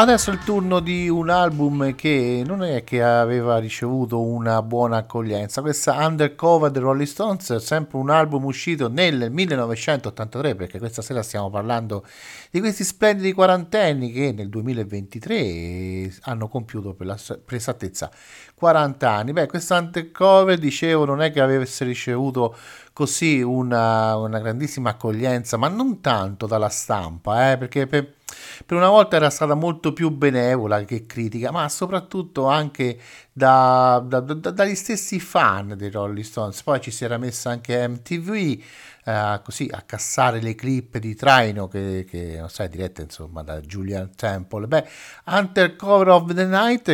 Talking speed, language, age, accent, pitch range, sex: 155 wpm, Italian, 50-69, native, 110-155 Hz, male